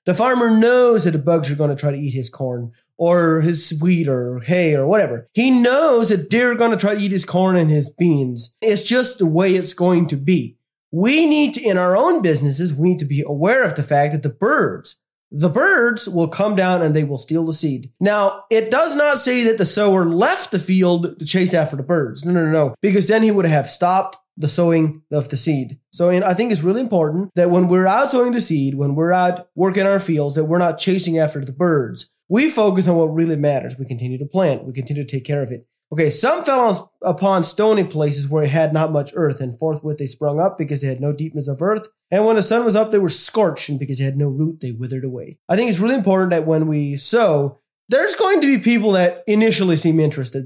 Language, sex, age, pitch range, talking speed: English, male, 20-39, 145-200 Hz, 245 wpm